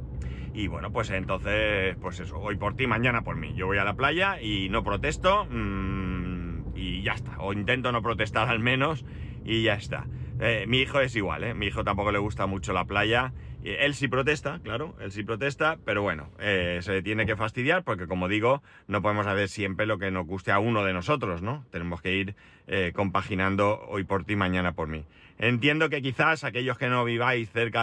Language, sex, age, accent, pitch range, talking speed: Spanish, male, 30-49, Spanish, 95-120 Hz, 205 wpm